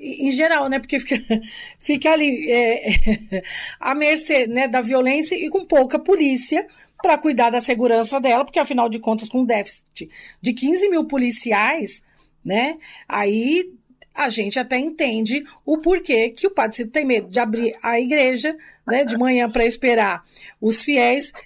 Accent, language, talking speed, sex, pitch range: Brazilian, Portuguese, 160 wpm, female, 235-295 Hz